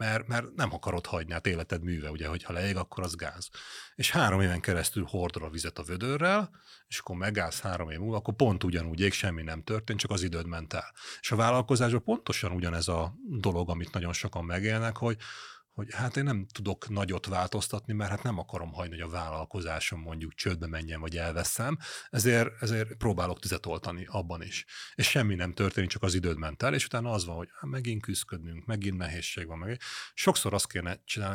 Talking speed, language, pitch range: 200 wpm, Hungarian, 85-110 Hz